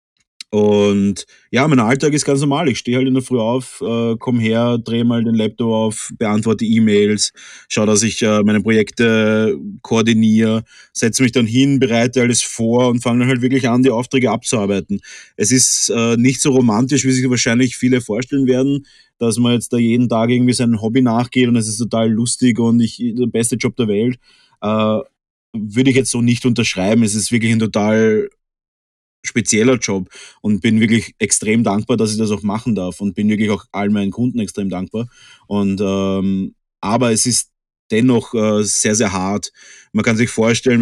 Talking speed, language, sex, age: 185 wpm, German, male, 30-49